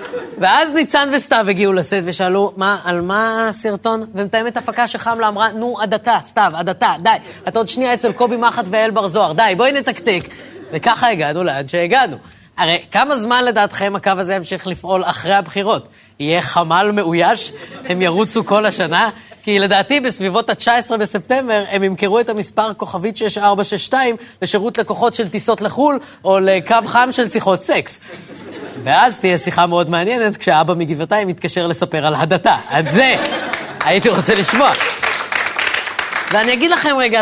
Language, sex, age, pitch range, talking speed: Hebrew, female, 20-39, 175-225 Hz, 150 wpm